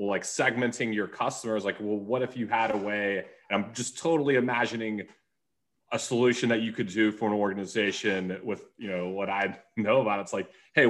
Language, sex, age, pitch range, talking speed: English, male, 30-49, 105-120 Hz, 210 wpm